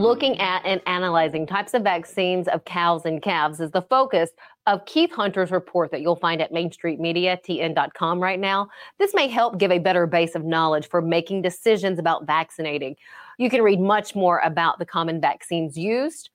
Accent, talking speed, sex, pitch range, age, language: American, 180 wpm, female, 170-220 Hz, 30-49, English